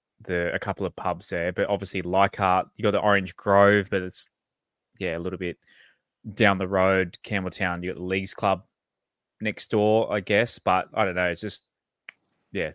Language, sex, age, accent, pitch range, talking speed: English, male, 20-39, Australian, 90-100 Hz, 190 wpm